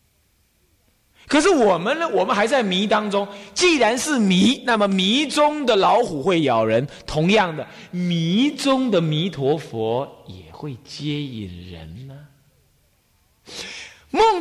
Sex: male